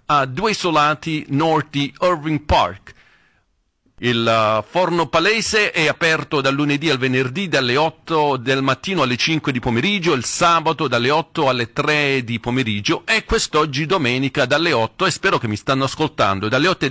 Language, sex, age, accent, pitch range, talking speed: Italian, male, 40-59, native, 125-165 Hz, 160 wpm